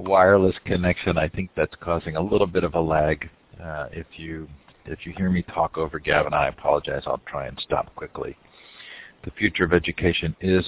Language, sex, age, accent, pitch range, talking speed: English, male, 50-69, American, 80-90 Hz, 190 wpm